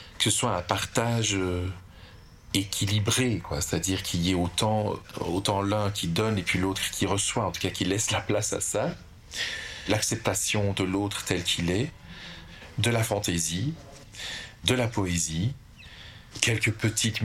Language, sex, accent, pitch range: French, male, French, 95-115 Hz